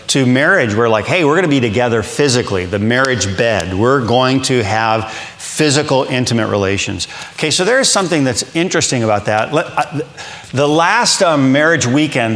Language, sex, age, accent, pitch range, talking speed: English, male, 40-59, American, 110-150 Hz, 165 wpm